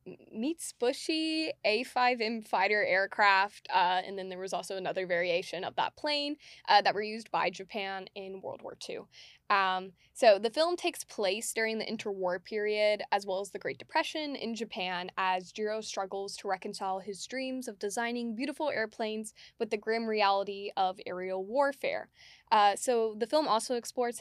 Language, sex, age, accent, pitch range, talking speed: English, female, 10-29, American, 190-245 Hz, 175 wpm